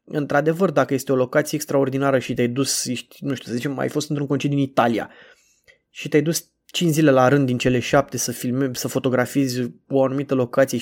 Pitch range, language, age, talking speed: 125-145 Hz, Romanian, 20-39, 205 wpm